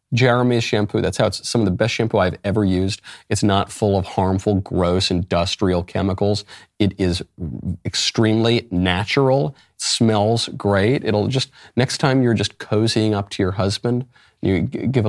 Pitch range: 95-120 Hz